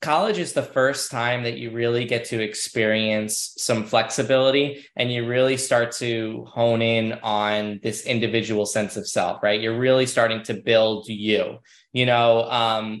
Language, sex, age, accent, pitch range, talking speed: English, male, 20-39, American, 115-145 Hz, 165 wpm